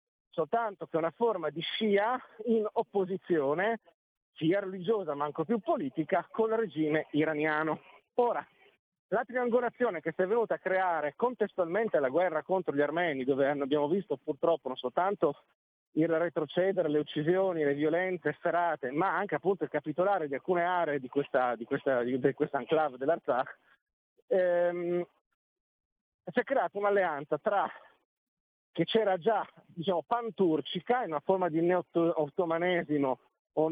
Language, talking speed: Italian, 140 wpm